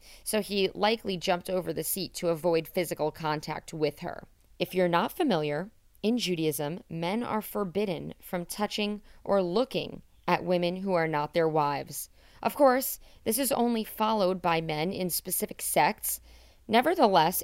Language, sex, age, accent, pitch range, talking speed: English, female, 40-59, American, 165-215 Hz, 155 wpm